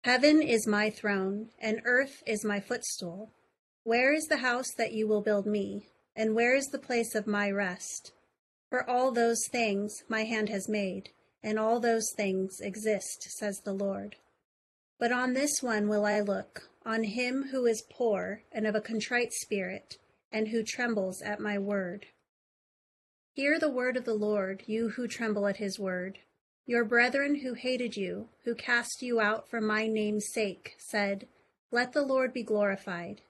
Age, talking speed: 30-49, 175 wpm